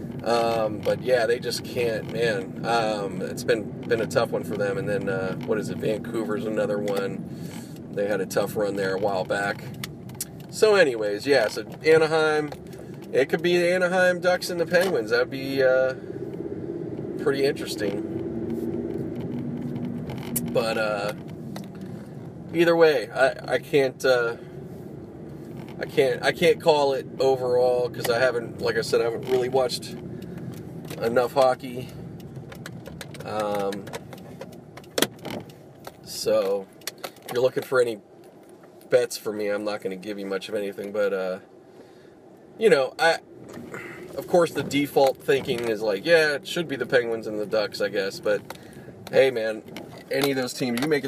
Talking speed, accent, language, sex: 155 wpm, American, English, male